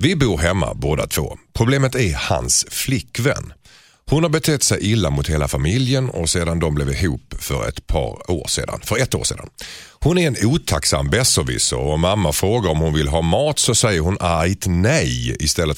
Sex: male